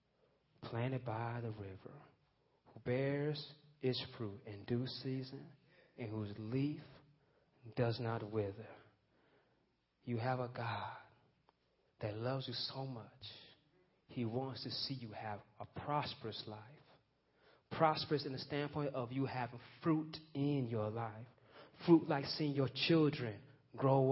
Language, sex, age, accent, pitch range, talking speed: English, male, 30-49, American, 125-165 Hz, 130 wpm